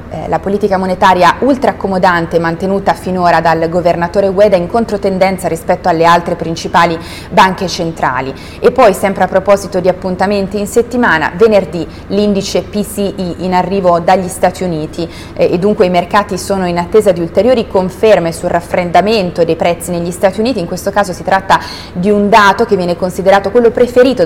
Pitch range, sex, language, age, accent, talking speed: 170-205 Hz, female, Italian, 30-49, native, 160 wpm